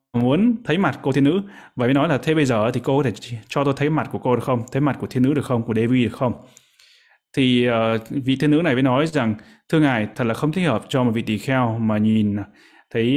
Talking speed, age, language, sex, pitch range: 275 wpm, 20-39, Vietnamese, male, 115-140 Hz